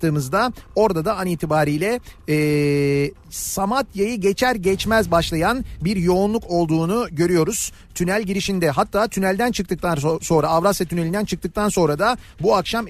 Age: 40-59